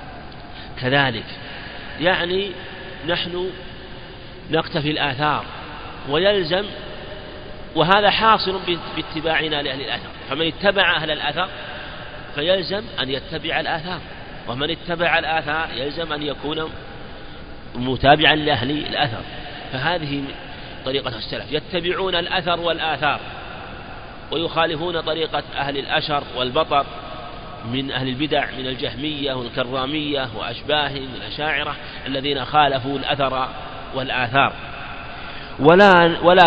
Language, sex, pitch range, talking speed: Arabic, male, 135-170 Hz, 90 wpm